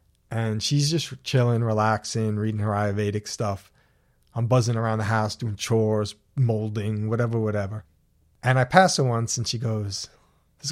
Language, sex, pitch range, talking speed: English, male, 110-145 Hz, 155 wpm